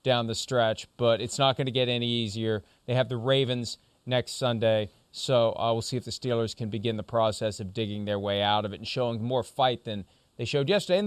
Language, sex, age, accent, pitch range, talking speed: English, male, 30-49, American, 115-160 Hz, 245 wpm